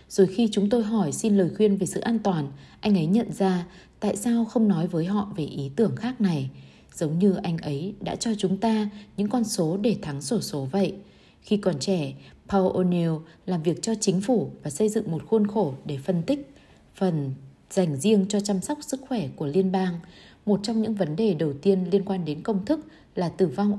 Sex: female